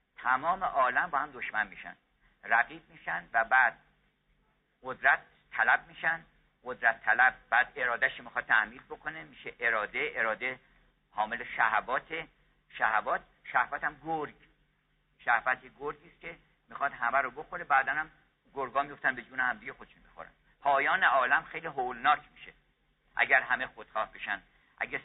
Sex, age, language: male, 50-69, Persian